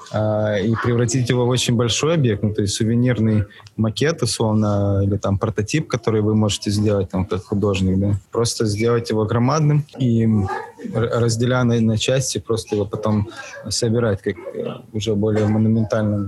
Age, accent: 20-39, native